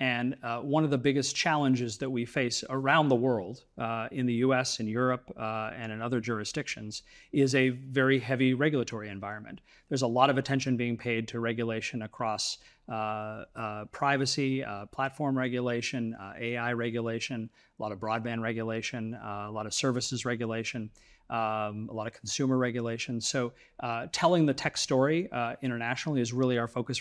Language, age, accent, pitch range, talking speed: English, 40-59, American, 115-135 Hz, 175 wpm